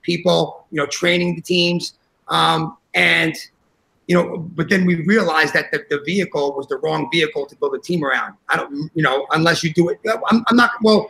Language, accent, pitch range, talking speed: English, American, 155-205 Hz, 210 wpm